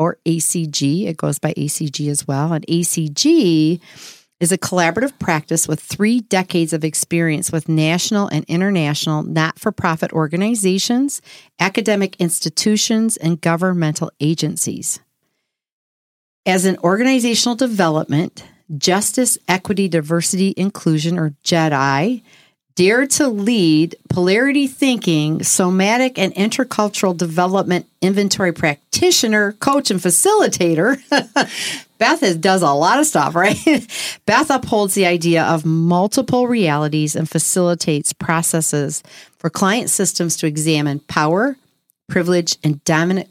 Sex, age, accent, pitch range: female, 40-59, American, 155-205 Hz